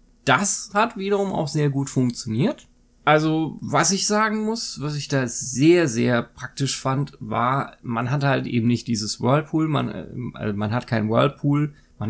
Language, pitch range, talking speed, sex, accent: German, 115-150 Hz, 165 wpm, male, German